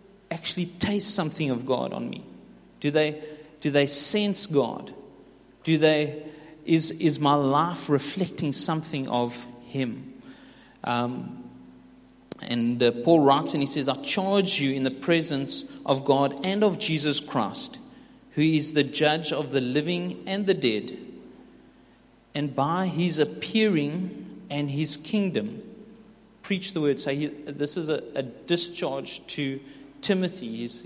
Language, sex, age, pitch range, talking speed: English, male, 40-59, 140-195 Hz, 140 wpm